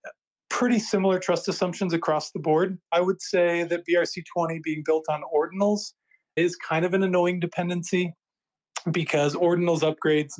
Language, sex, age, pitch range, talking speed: English, male, 30-49, 145-175 Hz, 150 wpm